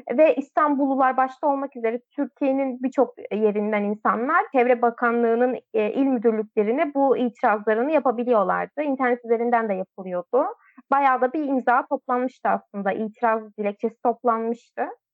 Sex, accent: female, native